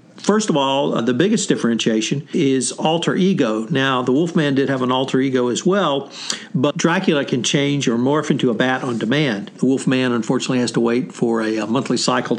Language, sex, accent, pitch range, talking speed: English, male, American, 130-165 Hz, 195 wpm